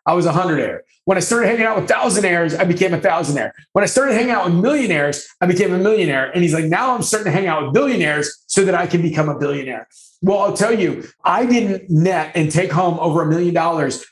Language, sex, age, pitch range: English, male, 30-49, 165-205 Hz